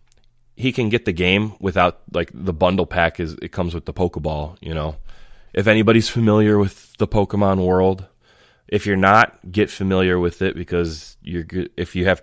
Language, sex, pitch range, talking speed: English, male, 80-95 Hz, 185 wpm